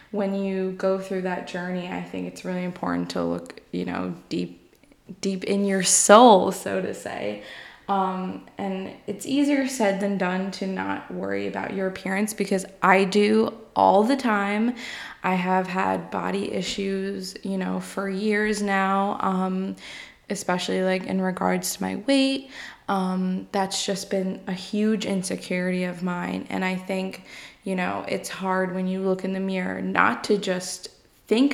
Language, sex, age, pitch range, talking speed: English, female, 20-39, 185-200 Hz, 165 wpm